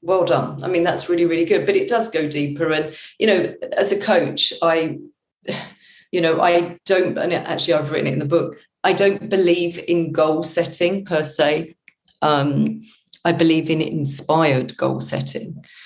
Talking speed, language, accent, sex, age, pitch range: 180 wpm, English, British, female, 40-59, 150-180 Hz